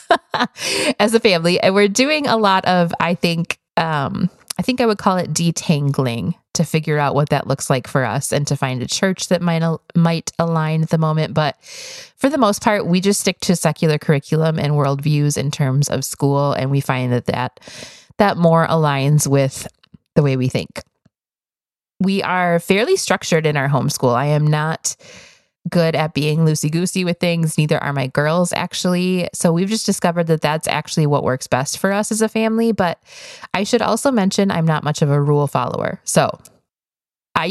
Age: 20-39